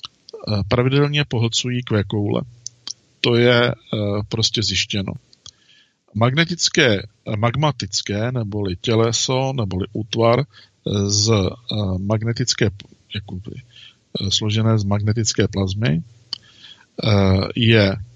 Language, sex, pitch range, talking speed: Czech, male, 105-125 Hz, 60 wpm